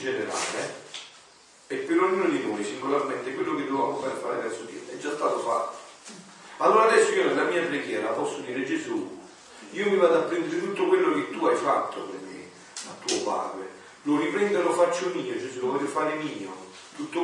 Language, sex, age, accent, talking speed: Italian, male, 40-59, native, 190 wpm